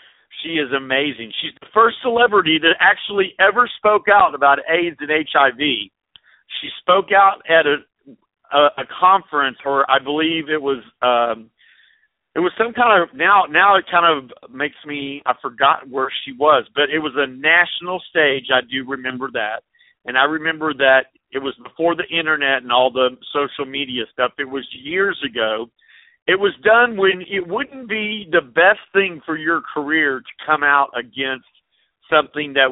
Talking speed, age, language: 175 wpm, 50-69, English